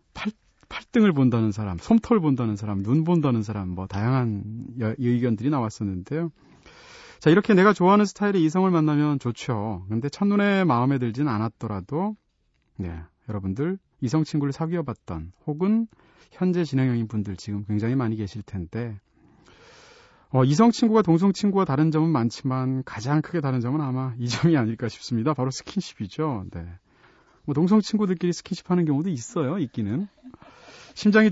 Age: 30-49